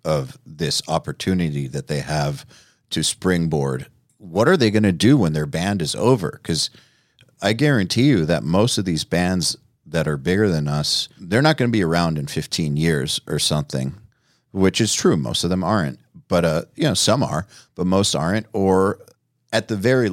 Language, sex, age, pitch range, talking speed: English, male, 40-59, 80-110 Hz, 190 wpm